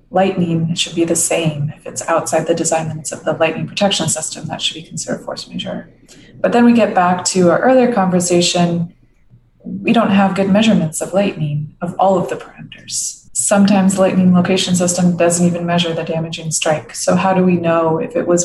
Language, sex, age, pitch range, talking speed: English, female, 20-39, 165-195 Hz, 205 wpm